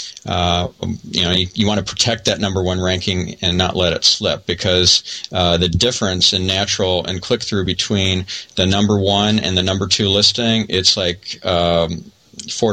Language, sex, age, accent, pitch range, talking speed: English, male, 40-59, American, 90-105 Hz, 185 wpm